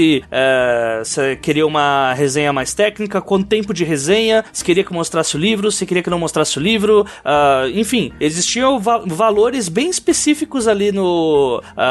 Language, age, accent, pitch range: Portuguese, 20-39, Brazilian, 155-225 Hz